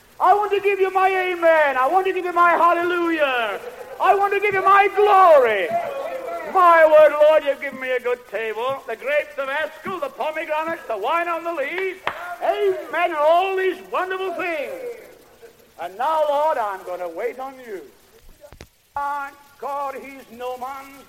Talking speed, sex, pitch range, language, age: 170 wpm, male, 235-355 Hz, English, 60-79